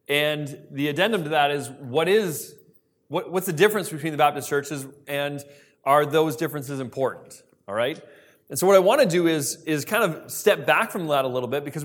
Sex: male